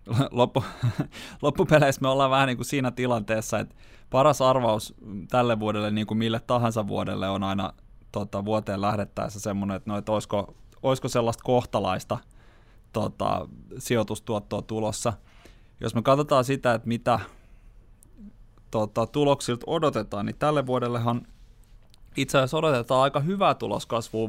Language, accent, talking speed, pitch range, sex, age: Finnish, native, 130 wpm, 105-125 Hz, male, 20-39